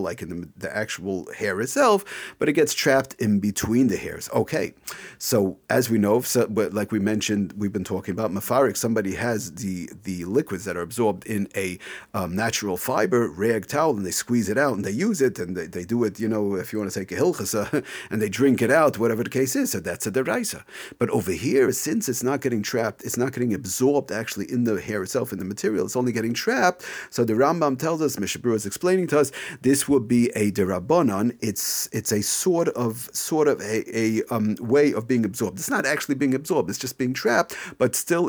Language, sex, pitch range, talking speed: English, male, 105-130 Hz, 225 wpm